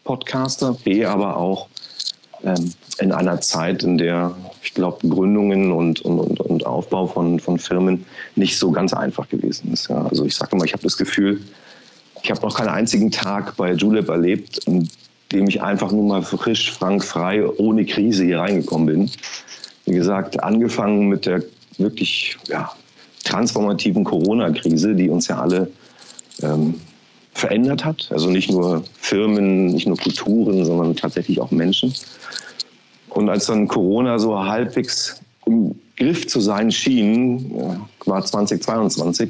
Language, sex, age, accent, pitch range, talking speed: German, male, 40-59, German, 85-110 Hz, 150 wpm